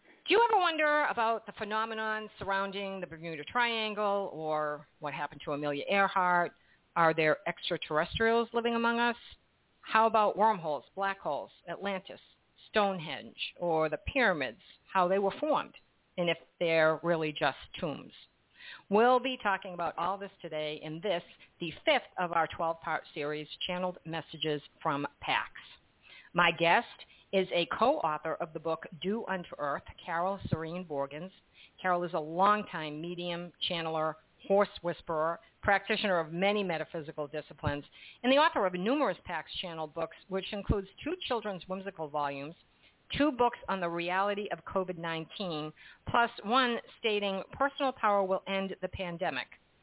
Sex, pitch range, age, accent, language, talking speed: female, 160-210 Hz, 50-69, American, English, 145 wpm